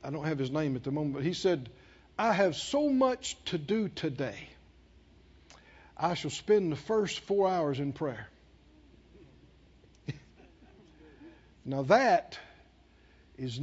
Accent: American